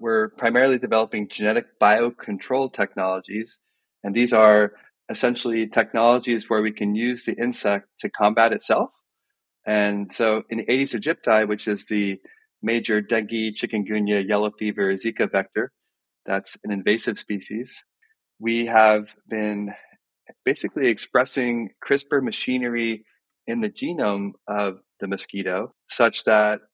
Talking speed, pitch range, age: 125 wpm, 105-120 Hz, 30-49